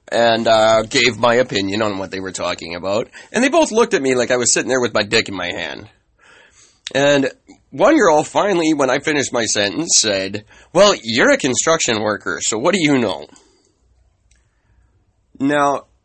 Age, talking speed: 30-49, 185 wpm